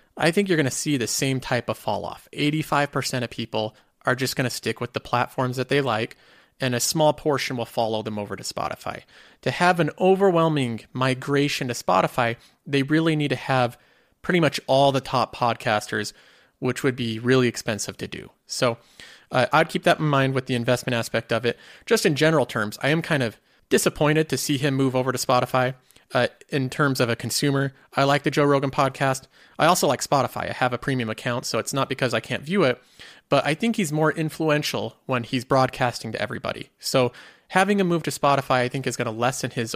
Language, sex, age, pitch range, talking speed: English, male, 30-49, 120-150 Hz, 215 wpm